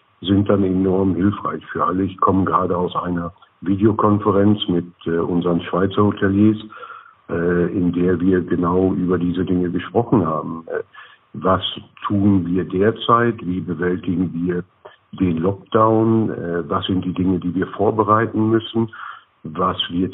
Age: 60-79